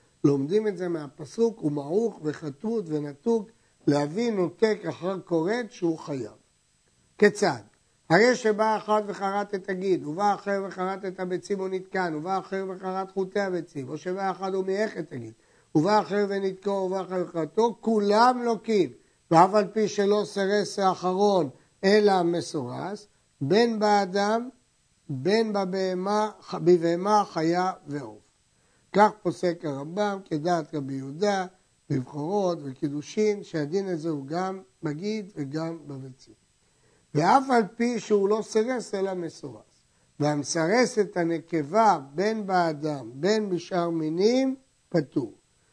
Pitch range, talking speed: 160-205 Hz, 120 wpm